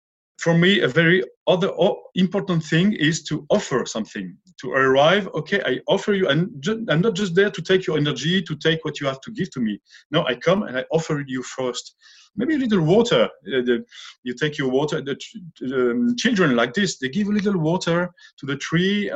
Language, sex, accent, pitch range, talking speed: English, male, French, 130-185 Hz, 195 wpm